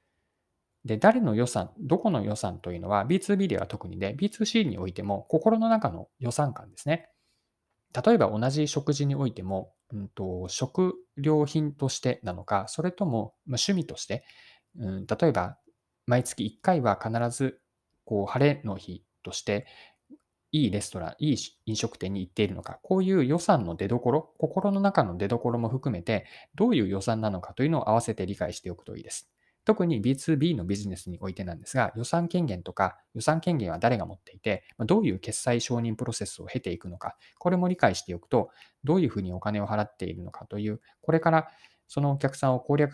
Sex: male